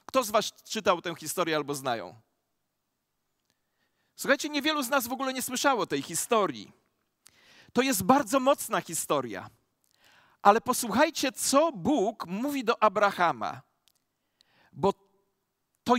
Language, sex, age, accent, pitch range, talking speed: Polish, male, 40-59, native, 205-275 Hz, 125 wpm